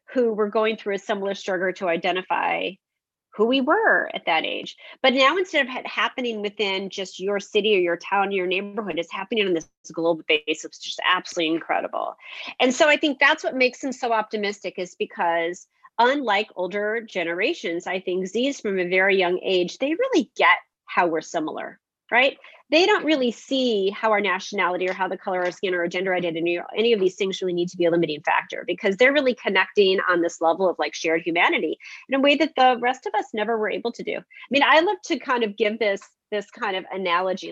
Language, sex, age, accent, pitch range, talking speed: English, female, 30-49, American, 185-250 Hz, 220 wpm